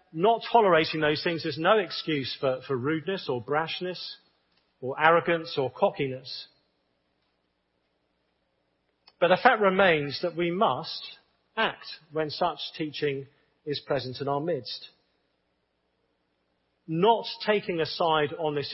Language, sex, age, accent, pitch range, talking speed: English, male, 40-59, British, 130-200 Hz, 120 wpm